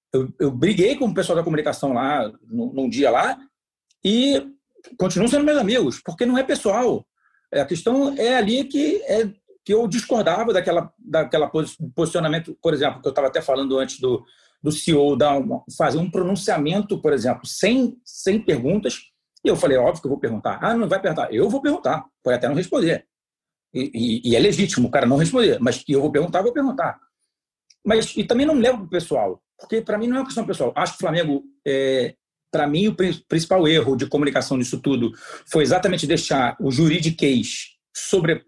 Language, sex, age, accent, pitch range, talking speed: Portuguese, male, 40-59, Brazilian, 155-230 Hz, 190 wpm